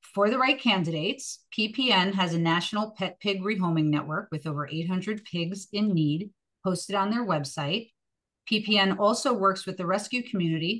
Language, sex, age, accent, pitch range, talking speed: English, female, 40-59, American, 160-195 Hz, 160 wpm